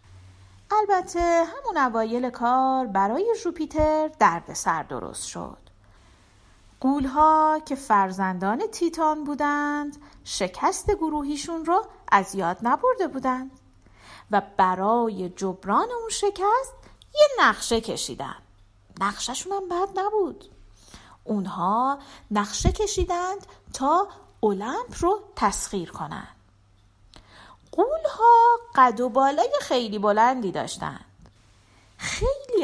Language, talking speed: Persian, 90 wpm